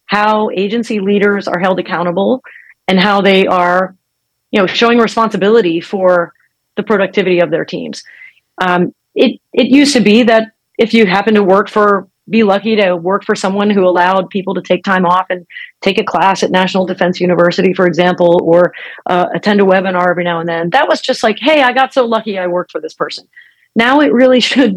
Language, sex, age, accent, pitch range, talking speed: English, female, 30-49, American, 180-225 Hz, 200 wpm